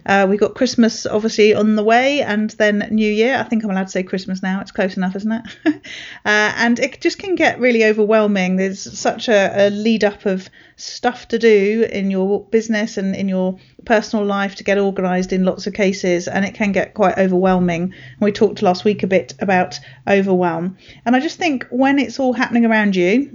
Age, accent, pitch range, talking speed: 40-59, British, 190-220 Hz, 210 wpm